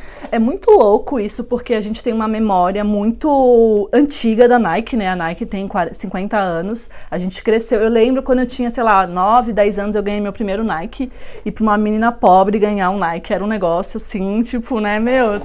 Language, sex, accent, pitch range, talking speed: Portuguese, female, Brazilian, 215-300 Hz, 210 wpm